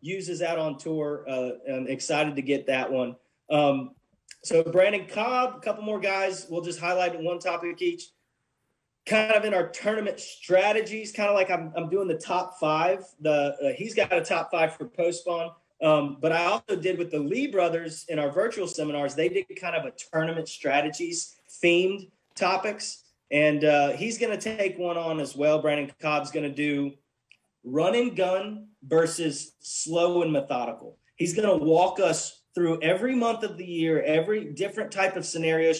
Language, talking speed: English, 185 wpm